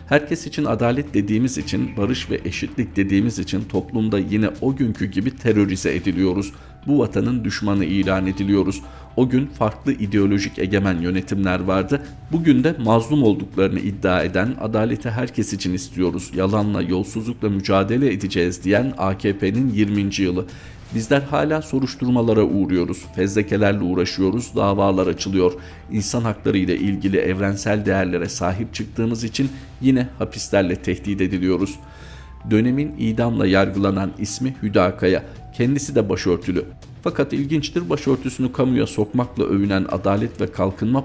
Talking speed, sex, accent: 125 wpm, male, native